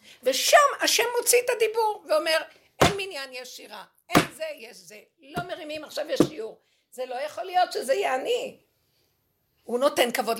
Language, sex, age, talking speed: Hebrew, female, 50-69, 165 wpm